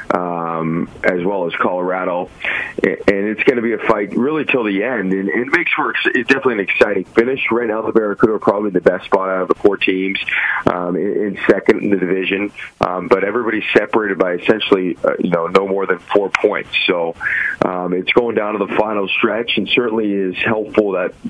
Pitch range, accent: 90-105 Hz, American